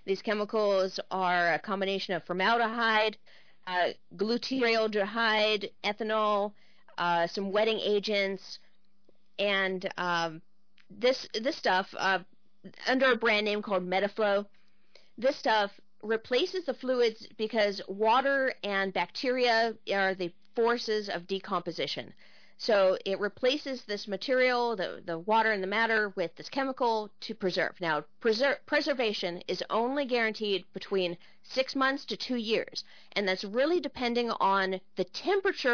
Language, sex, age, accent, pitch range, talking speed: English, female, 40-59, American, 190-235 Hz, 125 wpm